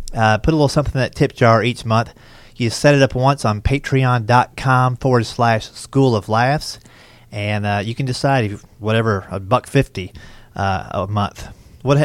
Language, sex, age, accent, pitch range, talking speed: English, male, 30-49, American, 110-135 Hz, 185 wpm